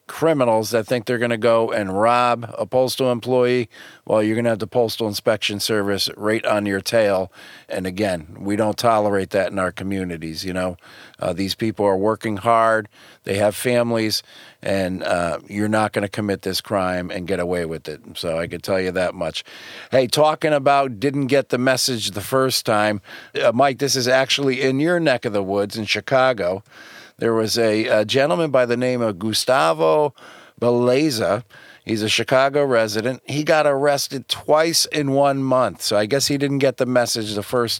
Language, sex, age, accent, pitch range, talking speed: English, male, 50-69, American, 105-130 Hz, 190 wpm